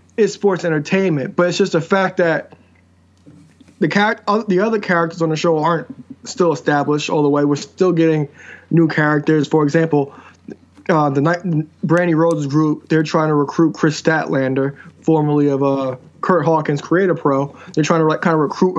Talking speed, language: 185 wpm, English